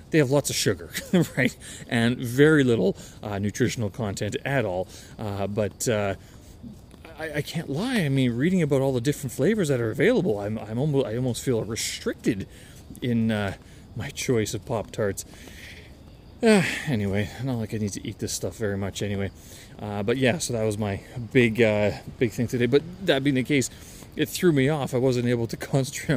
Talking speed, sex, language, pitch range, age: 195 wpm, male, English, 105-135 Hz, 30-49